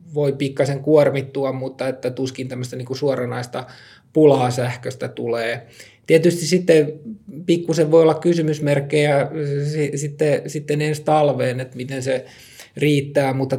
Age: 20-39